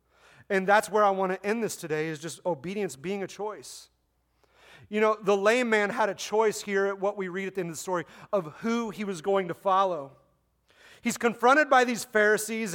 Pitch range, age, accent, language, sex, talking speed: 150-215 Hz, 30-49, American, English, male, 215 wpm